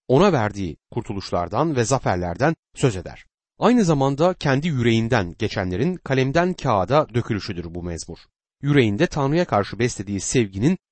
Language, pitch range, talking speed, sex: Turkish, 105-165 Hz, 120 wpm, male